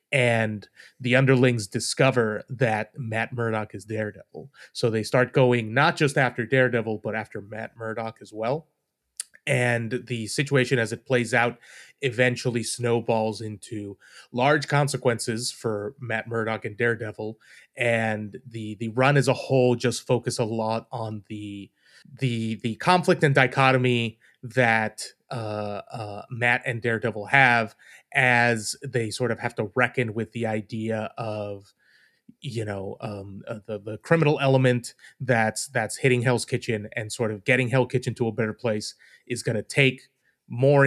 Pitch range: 110-125 Hz